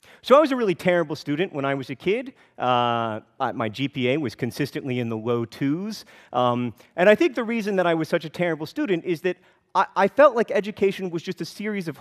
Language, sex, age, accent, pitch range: Korean, male, 40-59, American, 140-215 Hz